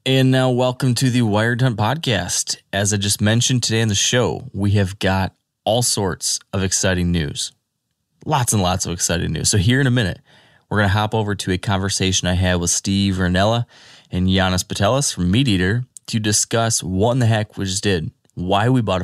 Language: English